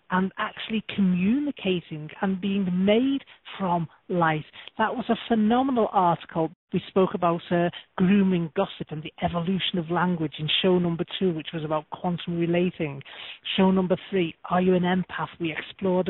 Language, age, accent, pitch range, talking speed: English, 40-59, British, 175-210 Hz, 155 wpm